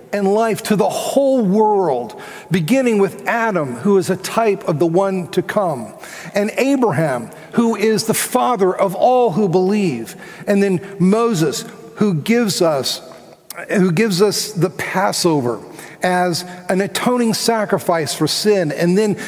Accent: American